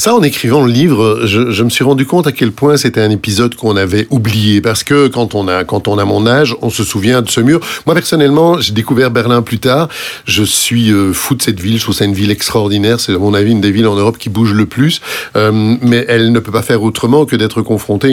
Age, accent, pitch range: 50-69, French, 110-145 Hz